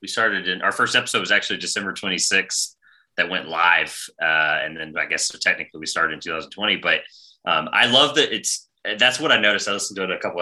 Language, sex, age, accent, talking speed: English, male, 30-49, American, 240 wpm